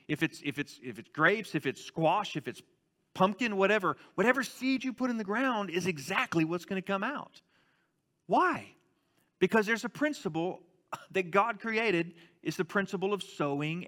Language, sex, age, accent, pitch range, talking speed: English, male, 40-59, American, 145-200 Hz, 165 wpm